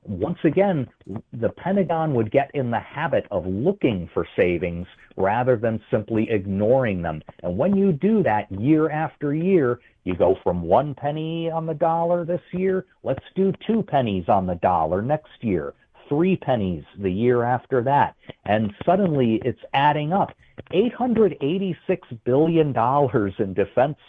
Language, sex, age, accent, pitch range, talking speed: English, male, 50-69, American, 105-180 Hz, 160 wpm